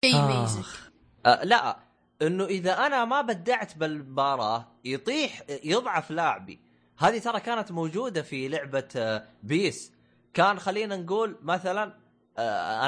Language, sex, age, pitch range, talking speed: Arabic, male, 20-39, 130-185 Hz, 105 wpm